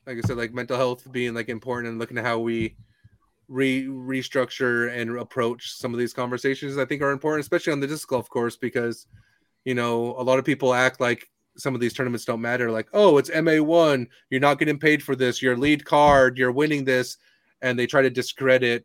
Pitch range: 120-150 Hz